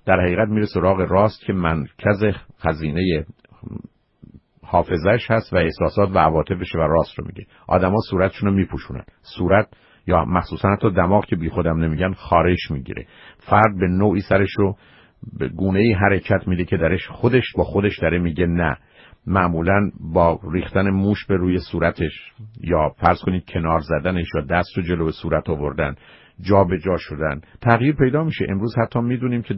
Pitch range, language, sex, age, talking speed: 85-110 Hz, Persian, male, 50-69, 170 wpm